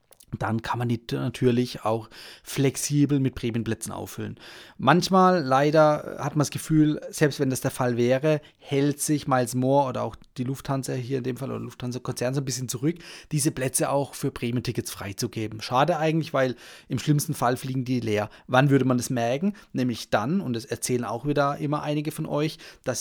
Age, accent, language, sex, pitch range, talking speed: 30-49, German, German, male, 125-160 Hz, 190 wpm